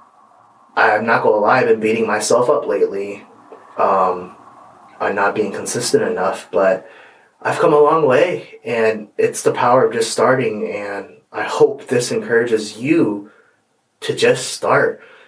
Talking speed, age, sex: 155 wpm, 20-39, male